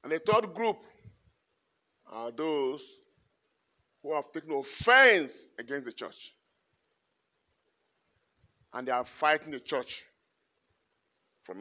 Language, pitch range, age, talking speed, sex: English, 150-210 Hz, 50-69, 105 wpm, male